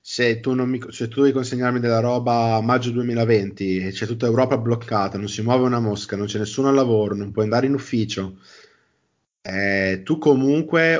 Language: Italian